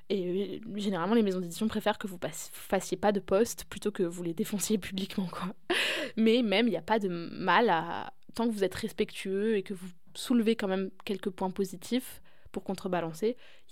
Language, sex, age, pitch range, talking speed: French, female, 20-39, 185-220 Hz, 200 wpm